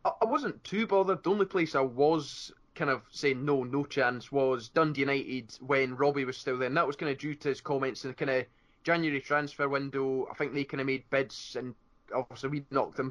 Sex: male